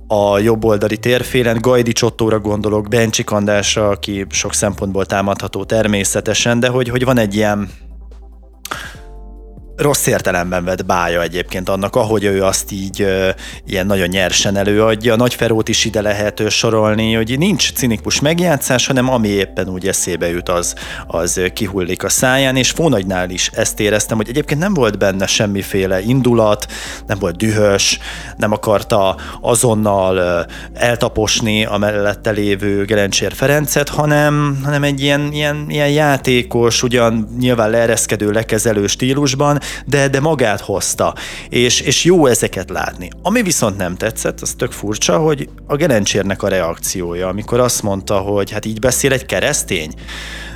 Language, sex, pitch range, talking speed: Hungarian, male, 100-125 Hz, 140 wpm